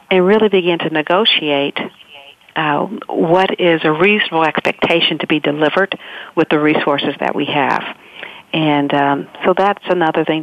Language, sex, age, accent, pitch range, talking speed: English, female, 50-69, American, 145-165 Hz, 150 wpm